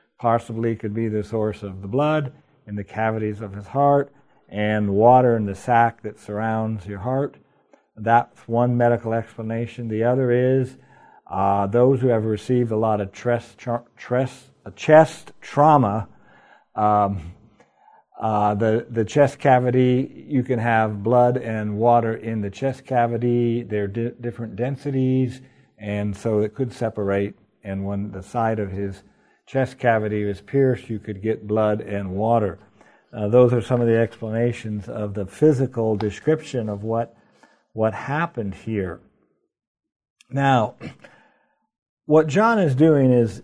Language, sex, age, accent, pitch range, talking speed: English, male, 60-79, American, 110-130 Hz, 140 wpm